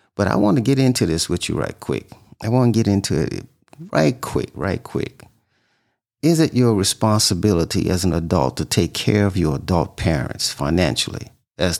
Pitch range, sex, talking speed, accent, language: 95-115 Hz, male, 190 wpm, American, English